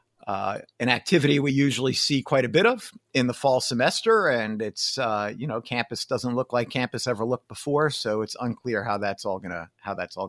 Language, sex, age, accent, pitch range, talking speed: English, male, 50-69, American, 115-150 Hz, 215 wpm